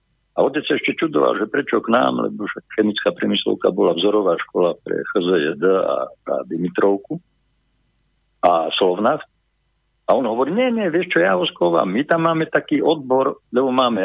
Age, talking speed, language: 50-69, 160 wpm, Slovak